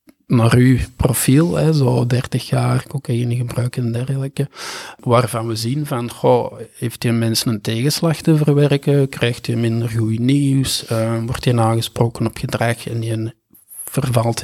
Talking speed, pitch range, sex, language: 155 wpm, 115-130 Hz, male, Dutch